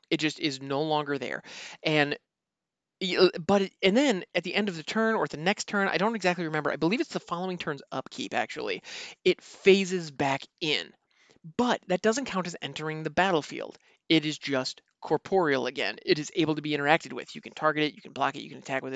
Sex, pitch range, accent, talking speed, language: male, 150-200 Hz, American, 215 wpm, English